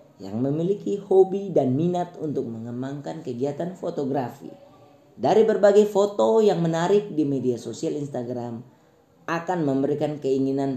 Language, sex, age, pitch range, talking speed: Indonesian, female, 20-39, 130-180 Hz, 115 wpm